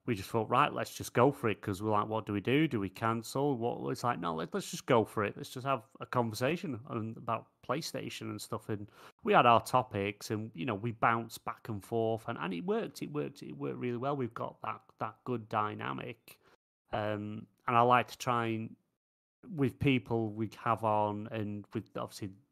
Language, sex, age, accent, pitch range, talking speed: English, male, 30-49, British, 105-120 Hz, 220 wpm